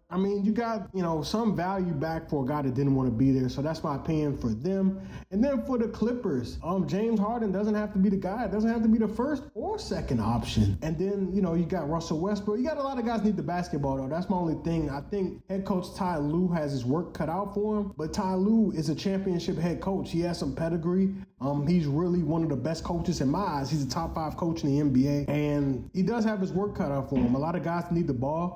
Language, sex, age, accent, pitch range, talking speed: English, male, 20-39, American, 150-200 Hz, 275 wpm